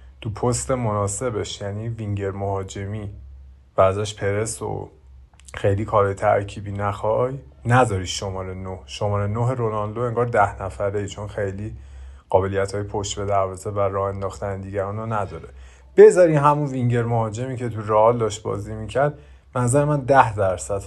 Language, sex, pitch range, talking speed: Persian, male, 95-120 Hz, 140 wpm